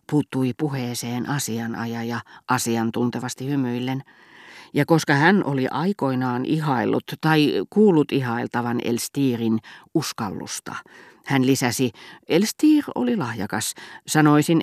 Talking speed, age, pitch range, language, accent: 90 wpm, 40-59, 120-160 Hz, Finnish, native